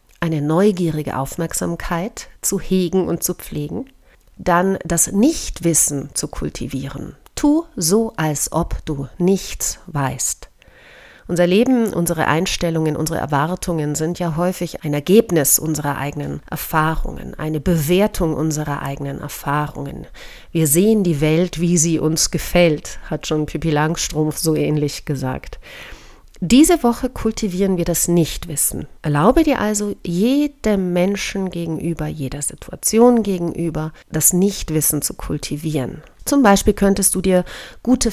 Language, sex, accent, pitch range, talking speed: German, female, German, 155-195 Hz, 125 wpm